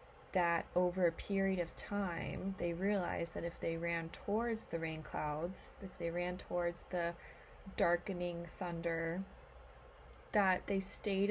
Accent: American